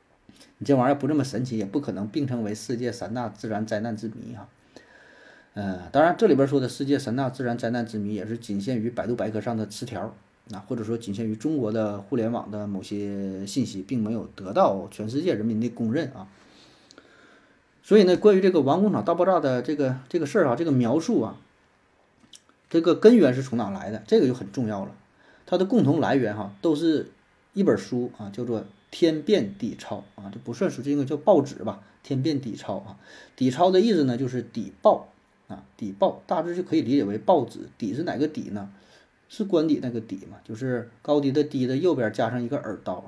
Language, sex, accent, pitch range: Chinese, male, native, 110-150 Hz